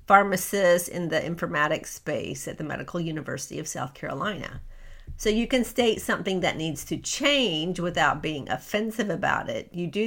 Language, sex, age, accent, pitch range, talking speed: English, female, 50-69, American, 160-225 Hz, 165 wpm